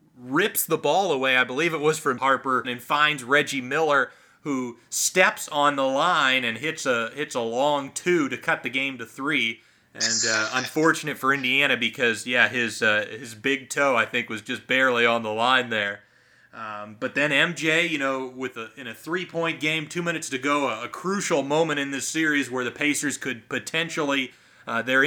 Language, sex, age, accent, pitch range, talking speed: English, male, 30-49, American, 130-160 Hz, 200 wpm